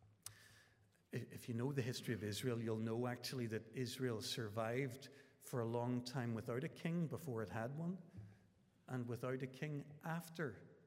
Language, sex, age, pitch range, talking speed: English, male, 60-79, 115-145 Hz, 160 wpm